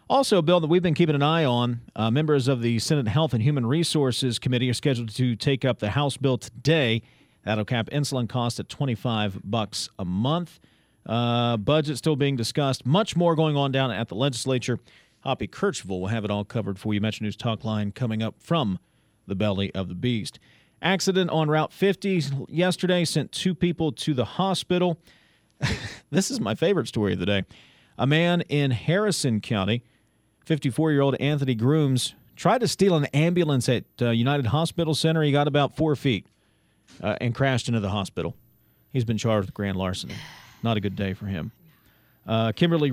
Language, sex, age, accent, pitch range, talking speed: English, male, 40-59, American, 110-155 Hz, 185 wpm